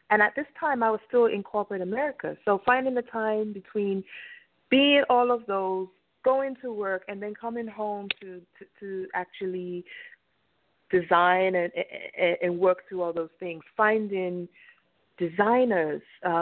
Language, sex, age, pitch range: English, female, 30-49, 185-240 Hz